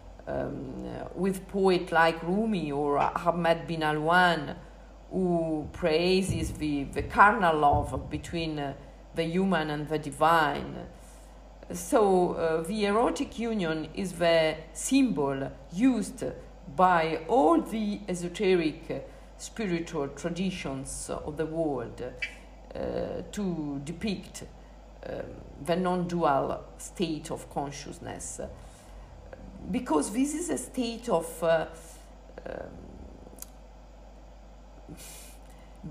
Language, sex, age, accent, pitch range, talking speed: Italian, female, 50-69, native, 155-195 Hz, 100 wpm